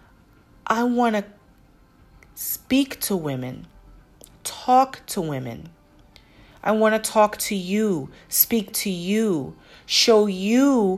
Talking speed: 110 wpm